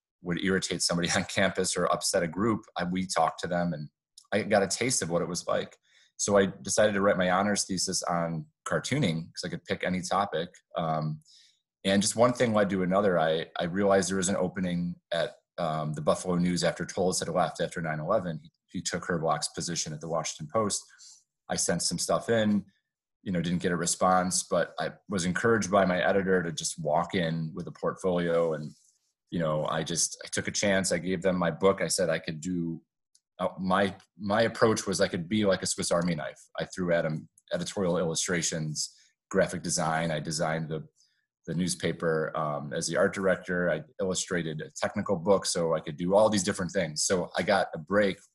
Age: 30-49